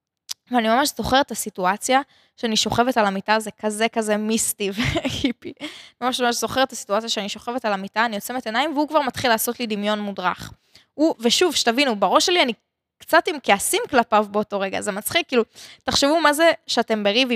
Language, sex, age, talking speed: Hebrew, female, 20-39, 180 wpm